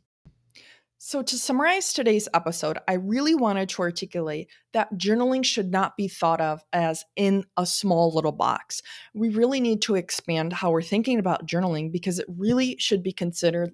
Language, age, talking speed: English, 20-39, 170 wpm